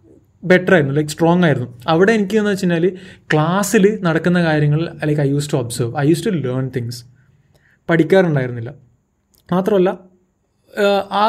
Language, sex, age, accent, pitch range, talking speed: Malayalam, male, 20-39, native, 135-185 Hz, 130 wpm